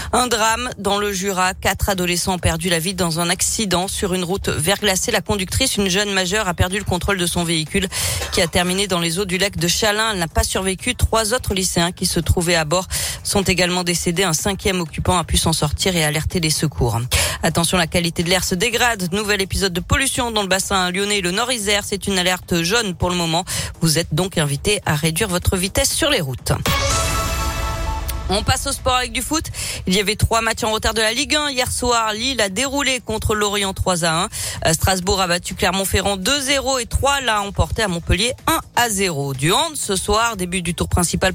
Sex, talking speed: female, 220 wpm